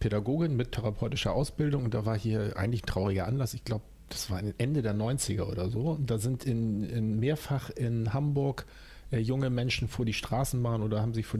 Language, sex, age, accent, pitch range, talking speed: German, male, 40-59, German, 105-135 Hz, 205 wpm